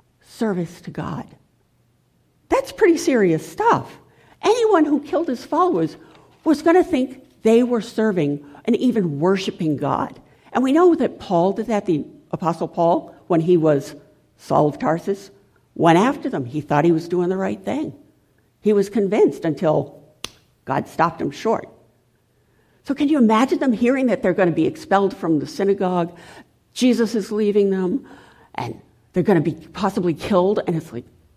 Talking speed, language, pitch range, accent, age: 165 wpm, English, 170-280 Hz, American, 60-79